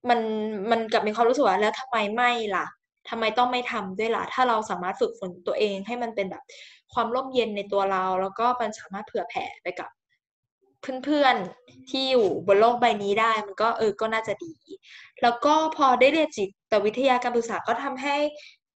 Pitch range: 210-265 Hz